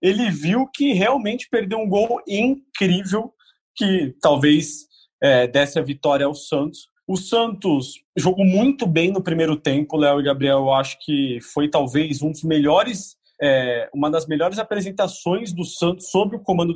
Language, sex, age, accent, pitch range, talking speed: Portuguese, male, 20-39, Brazilian, 150-200 Hz, 160 wpm